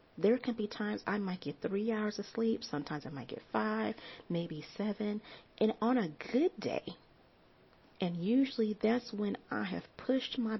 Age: 40-59